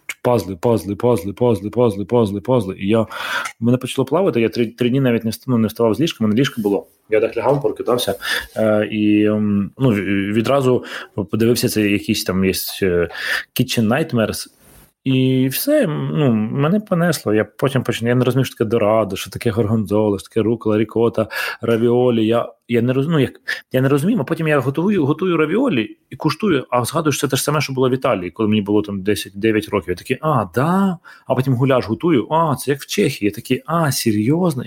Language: Ukrainian